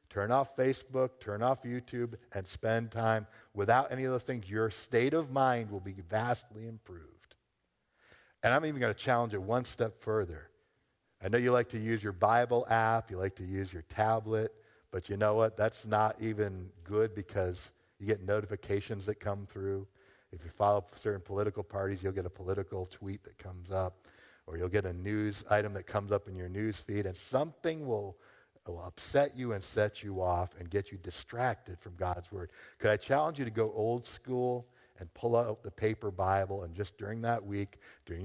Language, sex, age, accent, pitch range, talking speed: English, male, 50-69, American, 95-115 Hz, 200 wpm